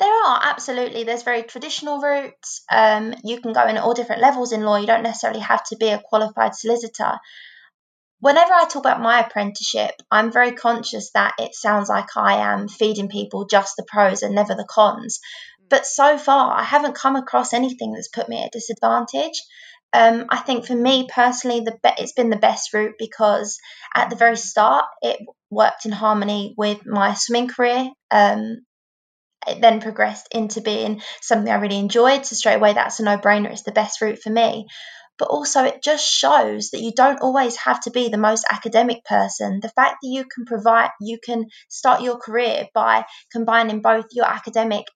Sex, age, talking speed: female, 20-39, 190 wpm